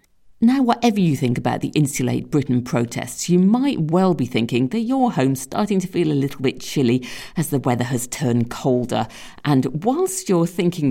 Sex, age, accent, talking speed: female, 50-69, British, 185 wpm